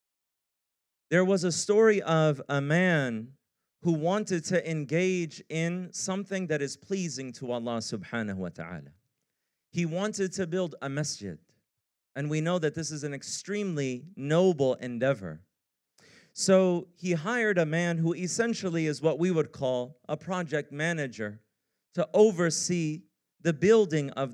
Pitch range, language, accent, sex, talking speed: 140-190 Hz, English, American, male, 140 wpm